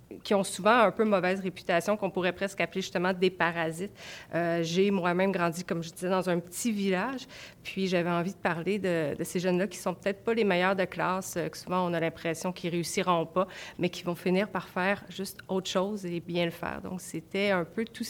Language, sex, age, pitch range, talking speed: French, female, 30-49, 170-200 Hz, 225 wpm